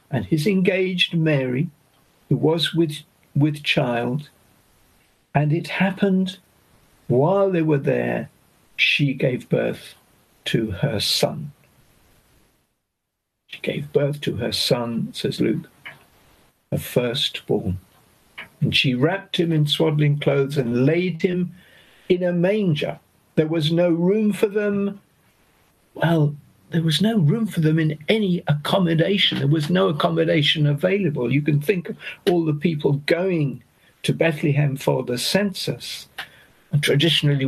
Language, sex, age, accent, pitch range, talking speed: English, male, 50-69, British, 140-175 Hz, 130 wpm